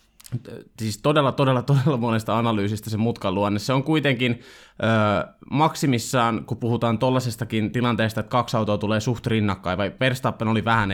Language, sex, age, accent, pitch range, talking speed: Finnish, male, 20-39, native, 110-135 Hz, 150 wpm